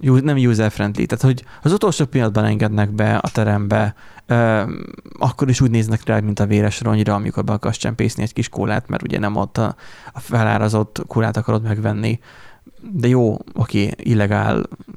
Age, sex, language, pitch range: 30-49, male, Hungarian, 105-120 Hz